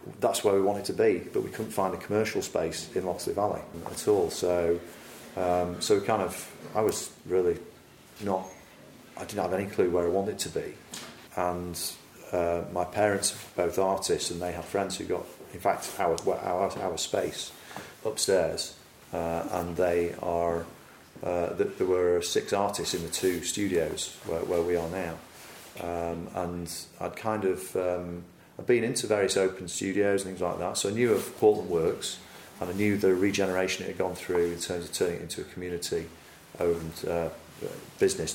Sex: male